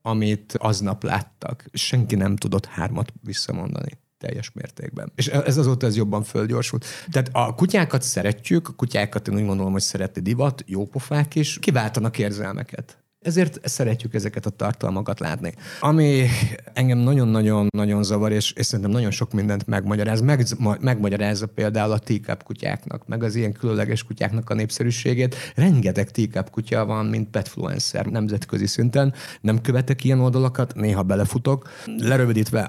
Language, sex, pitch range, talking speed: Hungarian, male, 105-125 Hz, 140 wpm